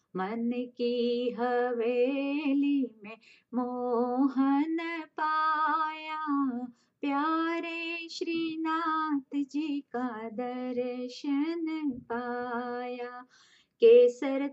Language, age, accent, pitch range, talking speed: English, 30-49, Indian, 255-335 Hz, 55 wpm